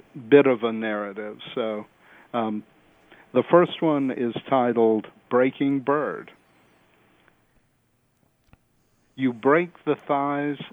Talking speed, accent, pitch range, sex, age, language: 95 wpm, American, 115-145 Hz, male, 50-69, English